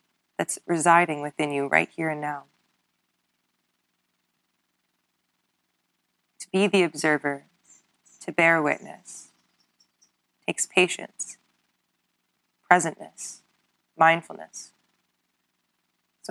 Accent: American